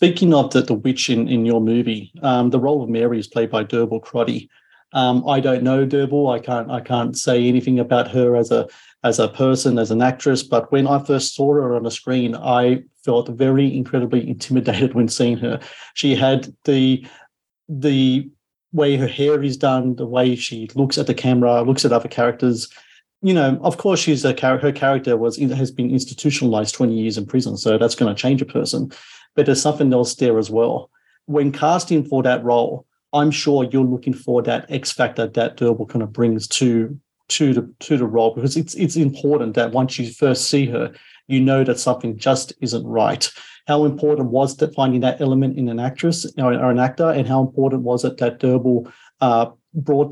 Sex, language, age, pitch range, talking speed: male, English, 40-59, 120-140 Hz, 205 wpm